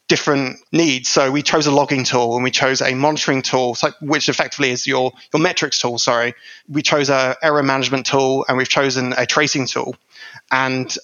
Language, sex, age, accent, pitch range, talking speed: English, male, 20-39, British, 130-155 Hz, 190 wpm